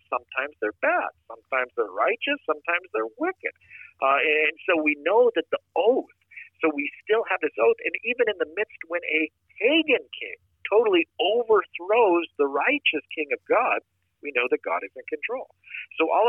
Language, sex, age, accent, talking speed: English, male, 50-69, American, 175 wpm